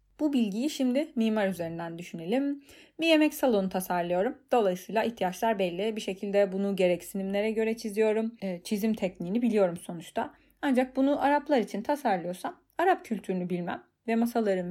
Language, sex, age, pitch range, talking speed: Turkish, female, 30-49, 185-240 Hz, 135 wpm